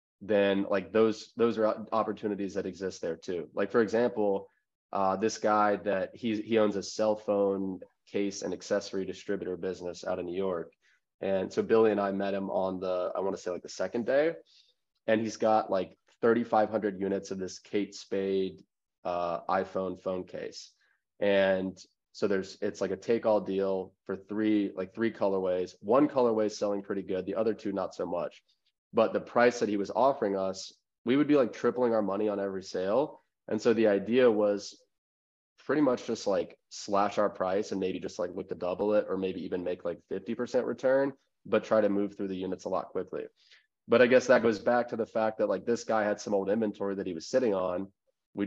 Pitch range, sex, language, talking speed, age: 95-110 Hz, male, English, 205 wpm, 20-39